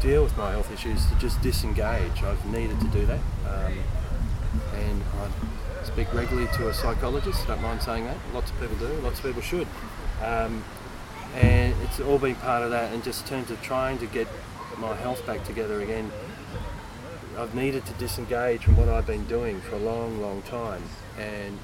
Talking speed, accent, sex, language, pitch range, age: 195 wpm, Australian, male, English, 100-125 Hz, 30-49